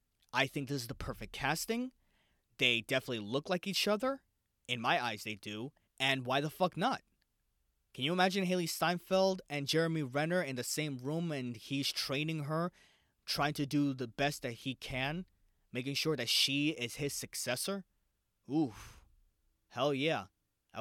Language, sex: English, male